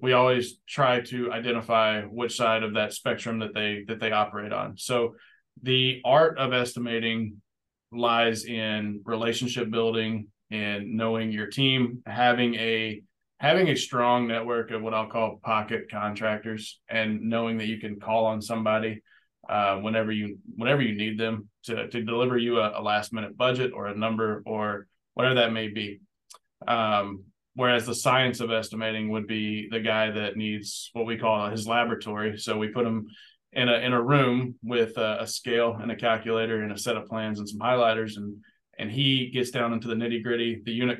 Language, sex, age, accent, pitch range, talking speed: English, male, 20-39, American, 110-120 Hz, 185 wpm